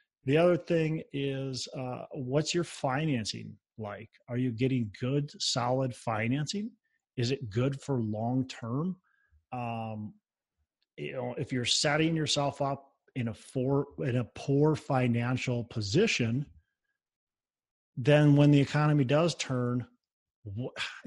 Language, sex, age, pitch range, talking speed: English, male, 30-49, 115-145 Hz, 125 wpm